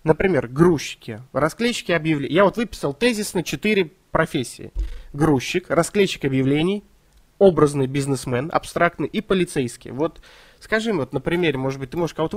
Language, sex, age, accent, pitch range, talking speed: Russian, male, 20-39, native, 125-175 Hz, 140 wpm